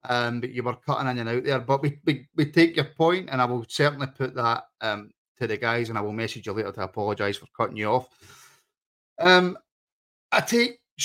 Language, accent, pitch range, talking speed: English, British, 120-140 Hz, 225 wpm